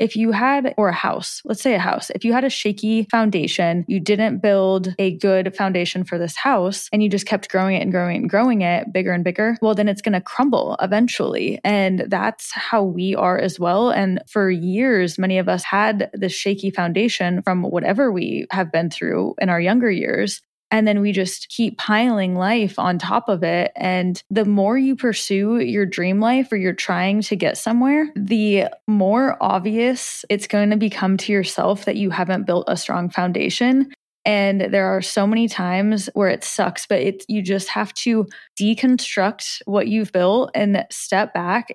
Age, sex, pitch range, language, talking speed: 20-39, female, 185-220 Hz, English, 195 wpm